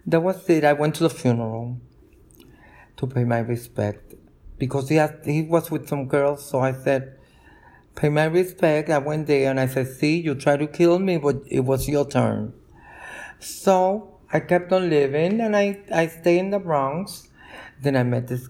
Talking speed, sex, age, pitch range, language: 190 wpm, male, 50-69, 120-150 Hz, English